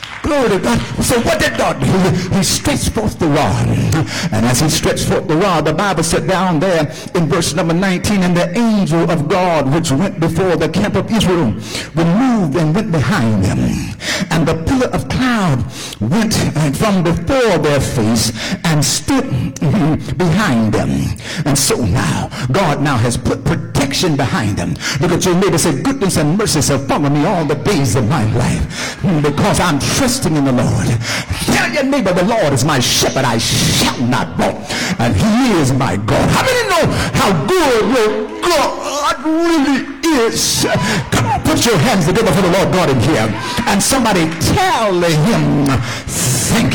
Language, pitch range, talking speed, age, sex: English, 145-200 Hz, 175 wpm, 60-79, male